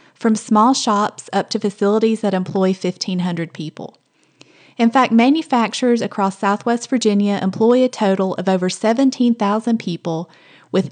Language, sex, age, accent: English, female, 30-49, American